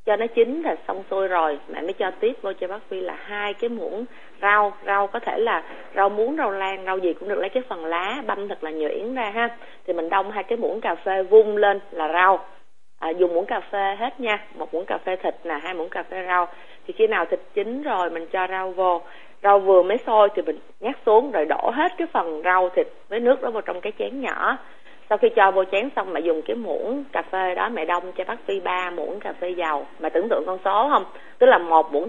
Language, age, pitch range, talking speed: Vietnamese, 20-39, 180-235 Hz, 260 wpm